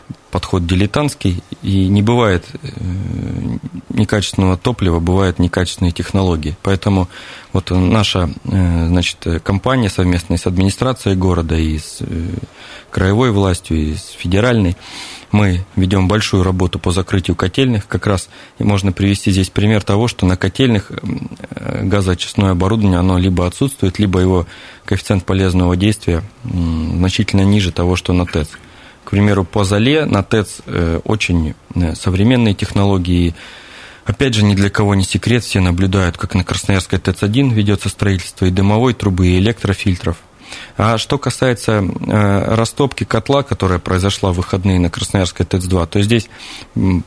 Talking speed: 135 wpm